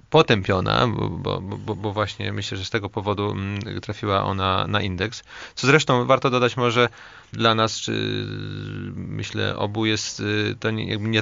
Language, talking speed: Polish, 160 wpm